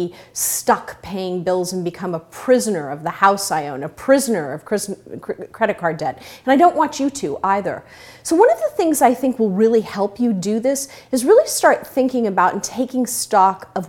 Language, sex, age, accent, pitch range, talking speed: English, female, 30-49, American, 195-290 Hz, 205 wpm